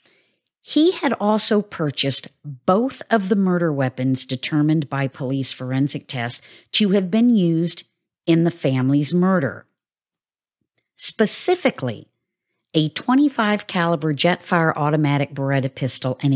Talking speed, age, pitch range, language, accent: 115 wpm, 50-69, 135-185 Hz, English, American